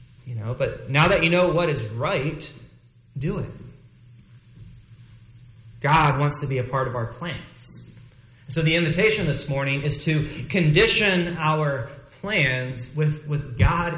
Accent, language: American, English